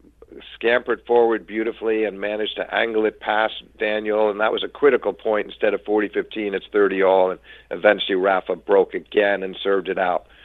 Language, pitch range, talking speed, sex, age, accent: English, 105-145 Hz, 170 wpm, male, 50-69, American